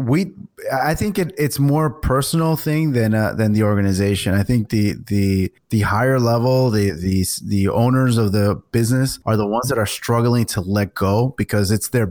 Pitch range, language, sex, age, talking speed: 100-120 Hz, English, male, 20-39, 190 wpm